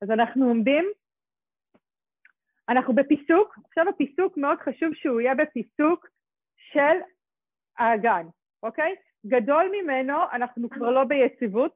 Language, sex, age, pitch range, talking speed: Hebrew, female, 30-49, 225-290 Hz, 105 wpm